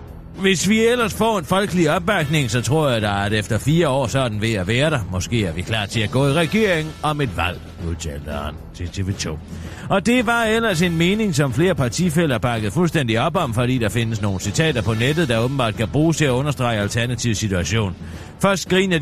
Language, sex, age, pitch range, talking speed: Danish, male, 40-59, 110-155 Hz, 210 wpm